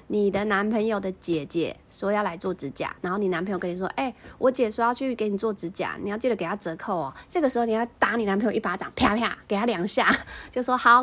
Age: 20-39